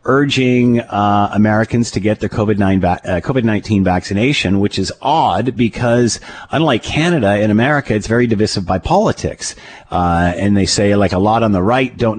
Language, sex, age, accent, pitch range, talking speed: English, male, 40-59, American, 95-120 Hz, 175 wpm